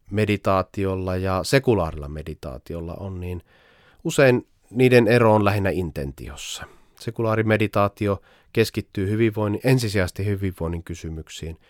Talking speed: 95 wpm